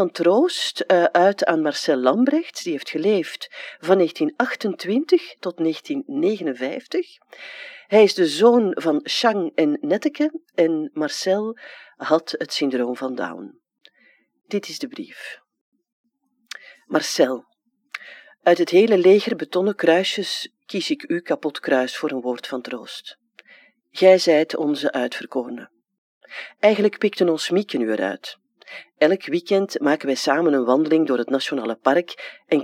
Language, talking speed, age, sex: Dutch, 130 wpm, 40-59, female